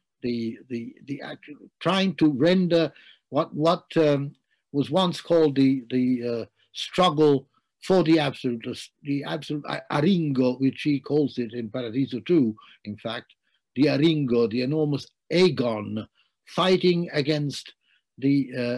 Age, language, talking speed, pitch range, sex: 60-79, English, 130 wpm, 125-165 Hz, male